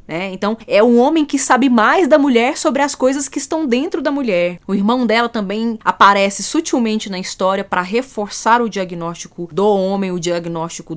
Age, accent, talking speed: 20-39, Brazilian, 185 wpm